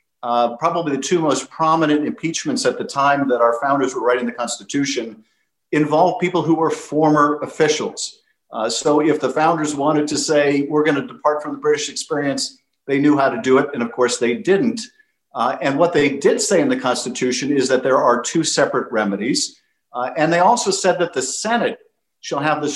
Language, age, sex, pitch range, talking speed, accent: English, 50-69, male, 130-175 Hz, 200 wpm, American